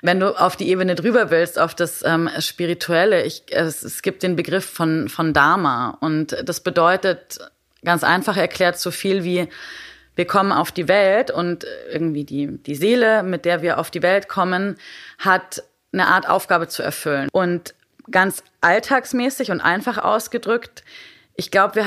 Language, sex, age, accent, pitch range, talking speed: German, female, 20-39, German, 165-195 Hz, 165 wpm